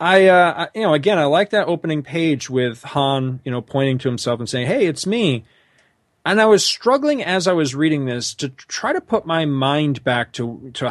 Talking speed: 220 wpm